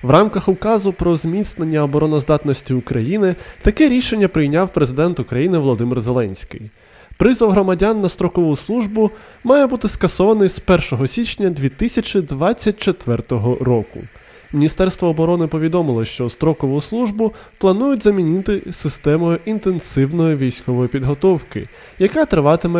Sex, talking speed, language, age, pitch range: male, 110 wpm, Ukrainian, 20-39, 135-205 Hz